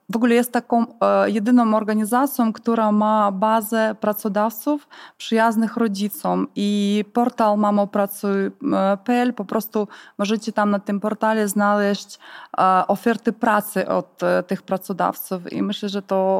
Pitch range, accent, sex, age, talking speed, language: 195-225 Hz, native, female, 20-39, 115 wpm, Polish